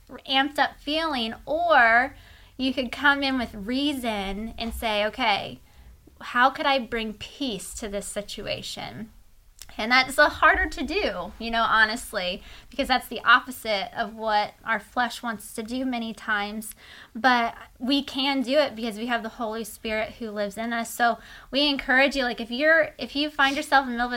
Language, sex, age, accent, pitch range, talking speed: English, female, 20-39, American, 225-275 Hz, 180 wpm